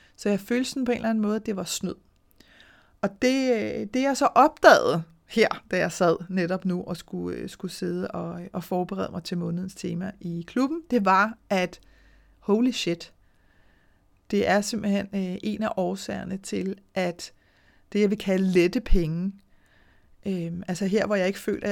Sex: female